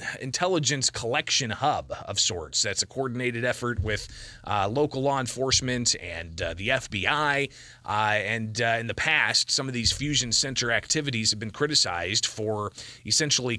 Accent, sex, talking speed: American, male, 155 wpm